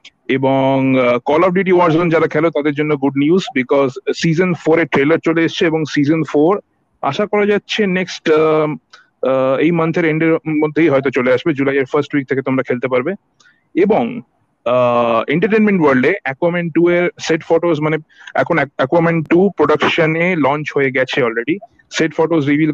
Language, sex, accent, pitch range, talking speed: Bengali, male, native, 145-175 Hz, 55 wpm